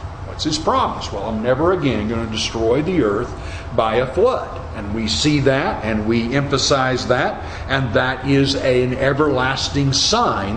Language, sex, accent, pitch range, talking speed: English, male, American, 95-160 Hz, 165 wpm